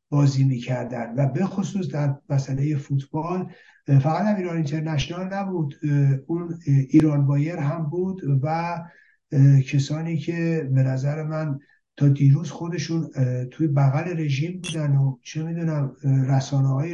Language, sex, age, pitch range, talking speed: Persian, male, 60-79, 140-170 Hz, 125 wpm